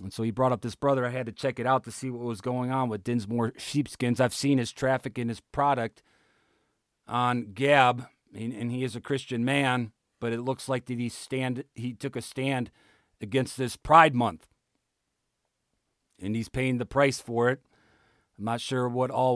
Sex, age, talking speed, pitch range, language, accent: male, 40-59, 200 wpm, 120-140 Hz, English, American